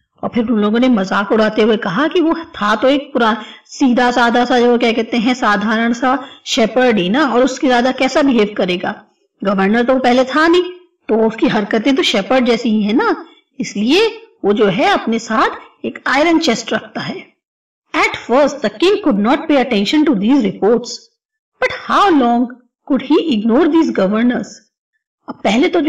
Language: English